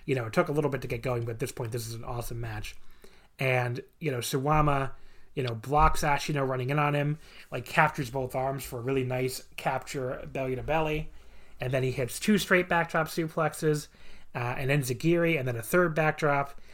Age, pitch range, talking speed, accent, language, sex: 30-49, 125-155 Hz, 215 wpm, American, English, male